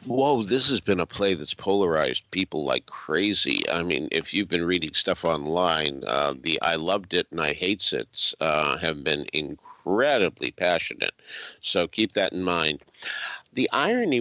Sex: male